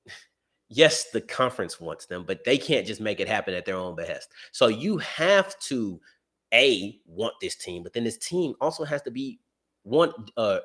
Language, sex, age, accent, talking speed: English, male, 30-49, American, 190 wpm